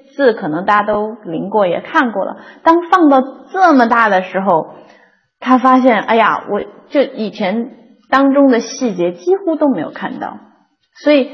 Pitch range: 185-265 Hz